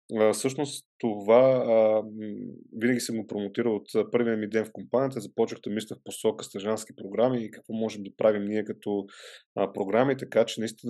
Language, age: Bulgarian, 30-49